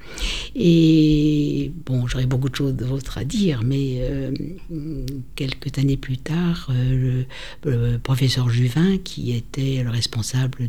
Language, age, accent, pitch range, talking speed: French, 60-79, French, 120-145 Hz, 135 wpm